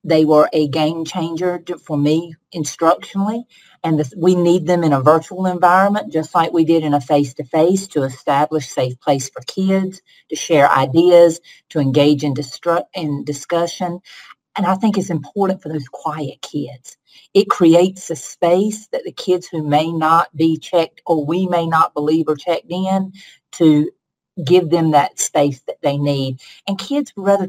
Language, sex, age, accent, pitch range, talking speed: English, female, 40-59, American, 155-195 Hz, 170 wpm